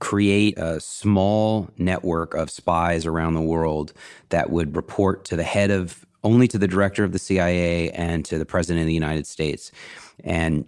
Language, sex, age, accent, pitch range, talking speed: English, male, 30-49, American, 85-105 Hz, 180 wpm